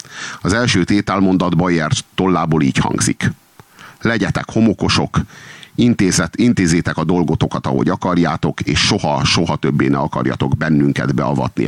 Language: Hungarian